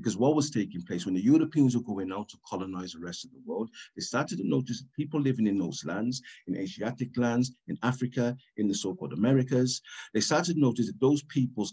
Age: 50-69